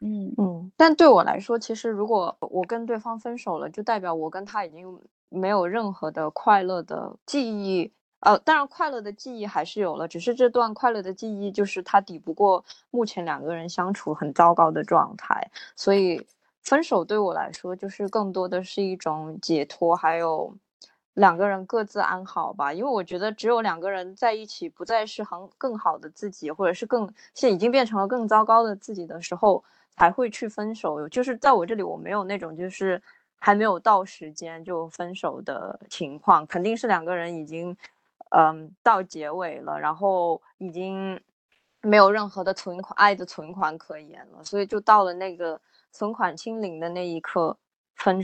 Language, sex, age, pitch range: Chinese, female, 20-39, 170-215 Hz